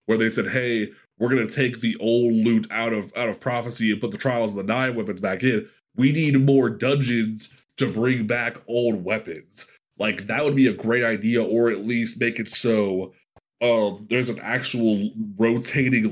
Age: 20-39